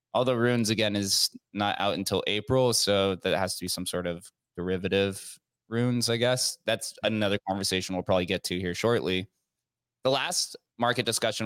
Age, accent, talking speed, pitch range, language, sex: 20-39, American, 175 wpm, 95-120 Hz, English, male